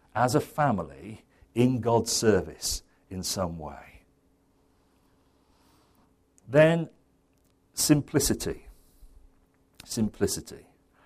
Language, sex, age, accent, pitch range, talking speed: English, male, 50-69, British, 90-130 Hz, 65 wpm